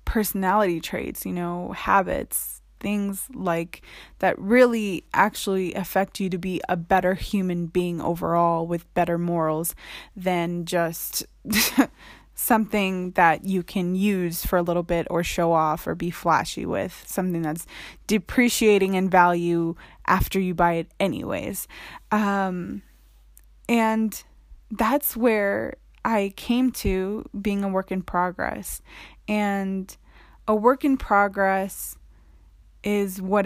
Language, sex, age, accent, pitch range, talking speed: English, female, 20-39, American, 170-210 Hz, 125 wpm